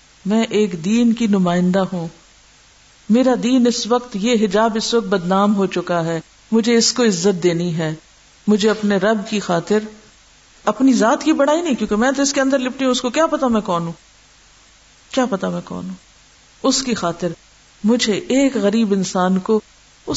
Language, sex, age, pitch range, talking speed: Urdu, female, 50-69, 190-240 Hz, 180 wpm